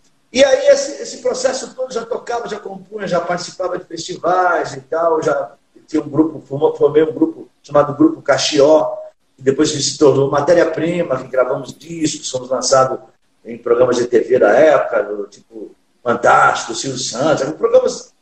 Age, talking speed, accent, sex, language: 50-69, 155 wpm, Brazilian, male, Portuguese